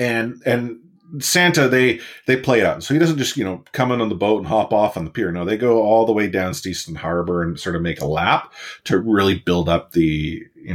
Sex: male